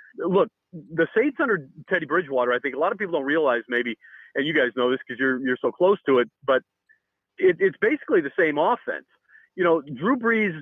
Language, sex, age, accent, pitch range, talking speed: English, male, 40-59, American, 140-180 Hz, 215 wpm